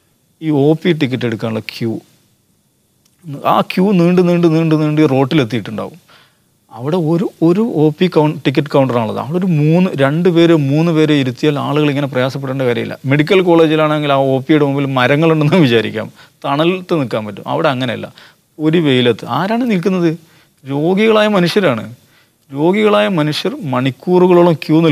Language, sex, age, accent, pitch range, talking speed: English, male, 30-49, Indian, 130-175 Hz, 95 wpm